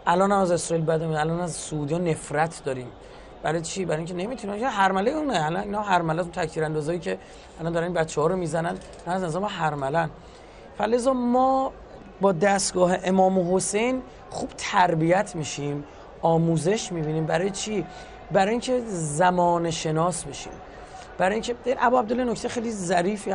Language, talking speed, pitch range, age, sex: Persian, 140 wpm, 155-215 Hz, 30-49, male